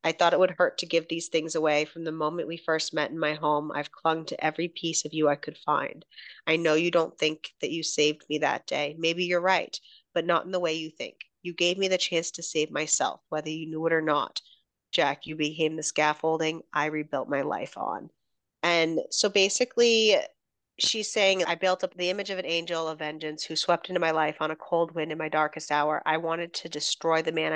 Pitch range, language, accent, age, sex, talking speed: 155-175 Hz, English, American, 30-49, female, 235 wpm